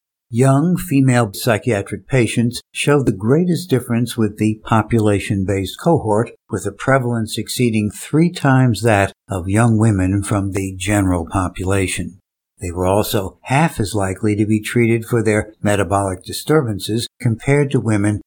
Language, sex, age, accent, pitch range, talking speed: English, male, 60-79, American, 100-125 Hz, 140 wpm